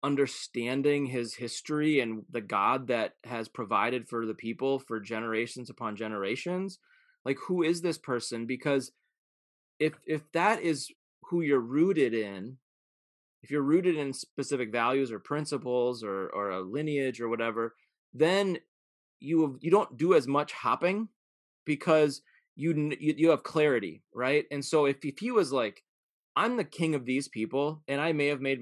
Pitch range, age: 120-155 Hz, 20-39